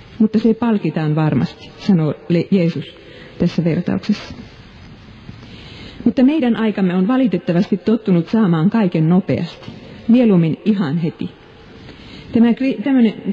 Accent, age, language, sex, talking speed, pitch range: native, 40-59, Finnish, female, 95 wpm, 160-210 Hz